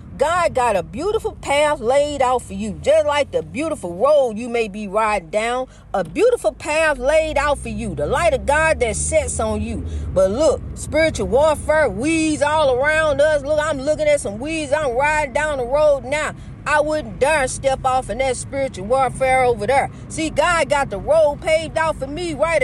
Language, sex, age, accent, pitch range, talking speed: English, female, 40-59, American, 265-315 Hz, 200 wpm